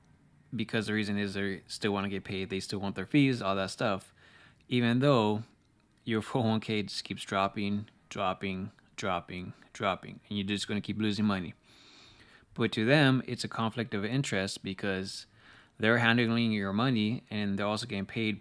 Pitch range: 100-115 Hz